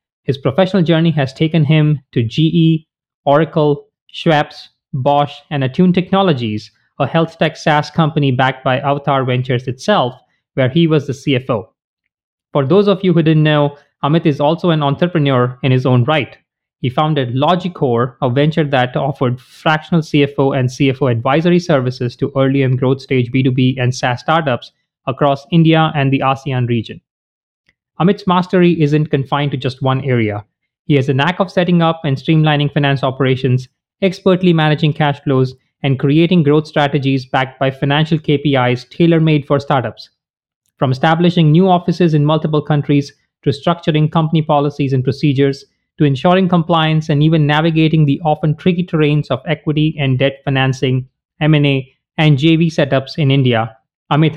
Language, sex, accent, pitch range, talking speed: English, male, Indian, 135-160 Hz, 155 wpm